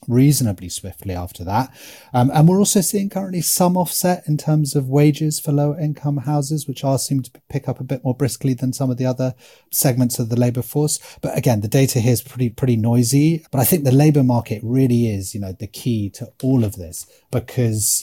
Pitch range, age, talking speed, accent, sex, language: 110-145 Hz, 30-49, 220 wpm, British, male, English